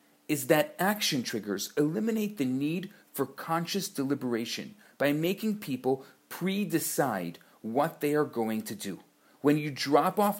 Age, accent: 40-59, Canadian